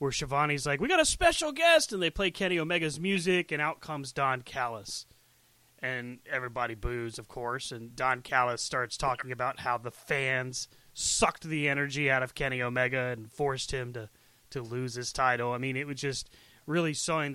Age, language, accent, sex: 30-49, English, American, male